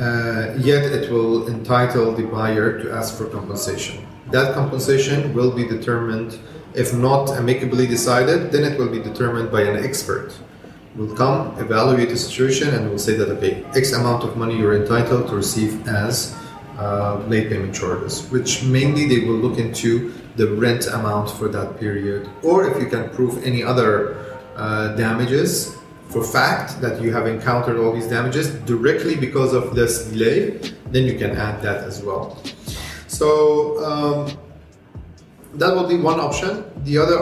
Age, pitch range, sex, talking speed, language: 30-49, 115-140 Hz, male, 165 wpm, English